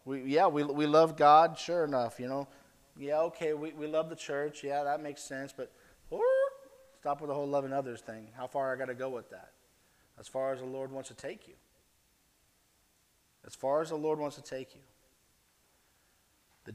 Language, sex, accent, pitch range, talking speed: English, male, American, 125-155 Hz, 205 wpm